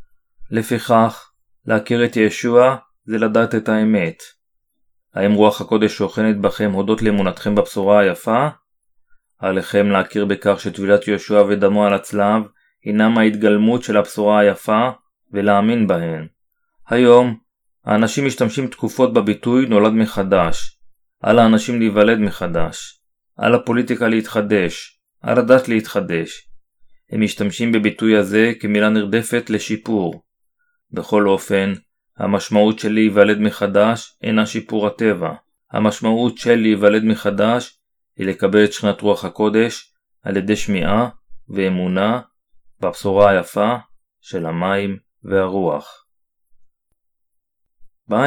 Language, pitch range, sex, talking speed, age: Hebrew, 100-115 Hz, male, 105 wpm, 30-49